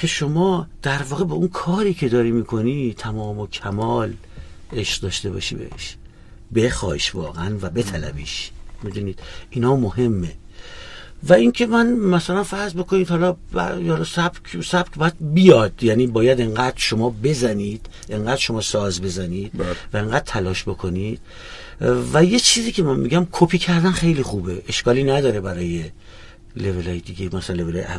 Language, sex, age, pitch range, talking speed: Persian, male, 50-69, 95-135 Hz, 150 wpm